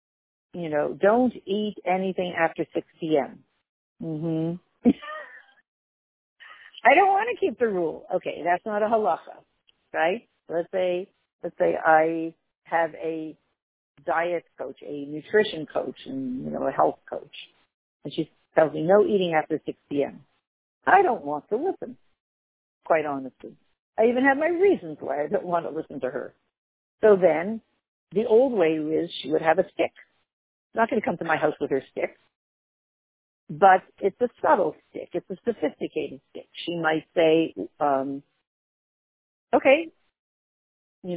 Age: 50-69